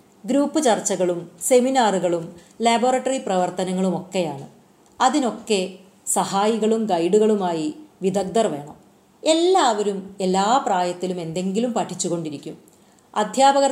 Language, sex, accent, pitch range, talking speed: Malayalam, female, native, 185-240 Hz, 70 wpm